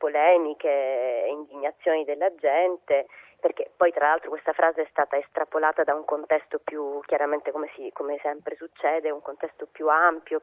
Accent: native